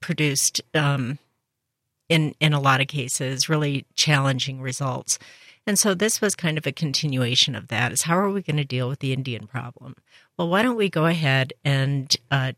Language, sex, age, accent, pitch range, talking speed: English, female, 50-69, American, 130-155 Hz, 190 wpm